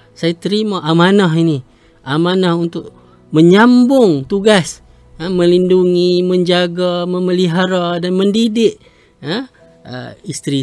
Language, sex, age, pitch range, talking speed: Malay, male, 30-49, 150-200 Hz, 95 wpm